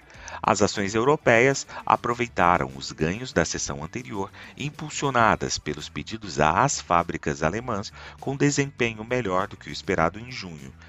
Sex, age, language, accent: male, 40-59, Portuguese, Brazilian